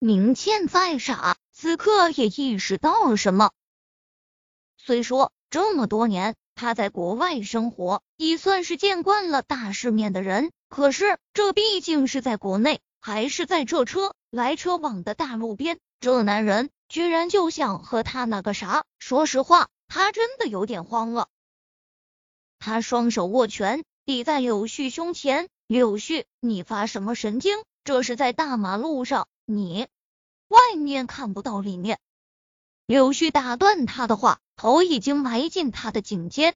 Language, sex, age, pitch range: Chinese, female, 20-39, 225-320 Hz